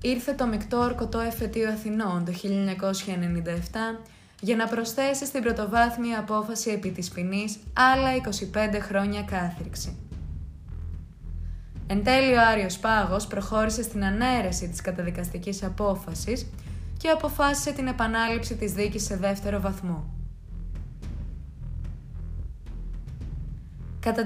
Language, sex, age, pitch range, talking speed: Greek, female, 20-39, 185-250 Hz, 105 wpm